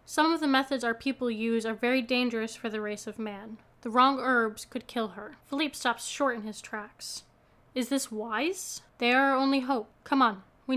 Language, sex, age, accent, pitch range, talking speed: English, female, 10-29, American, 220-260 Hz, 210 wpm